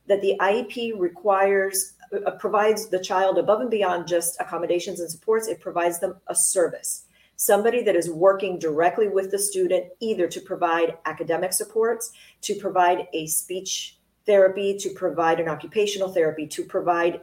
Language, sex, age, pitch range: English, female, 40-59, 175-210 Hz